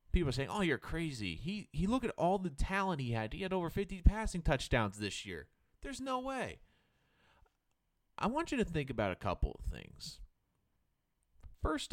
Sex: male